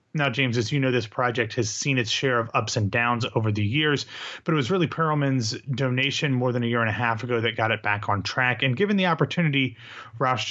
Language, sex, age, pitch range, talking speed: English, male, 30-49, 115-140 Hz, 245 wpm